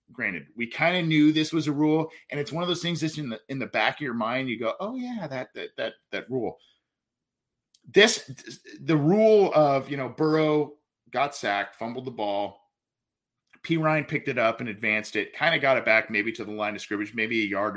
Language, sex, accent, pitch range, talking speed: English, male, American, 110-150 Hz, 225 wpm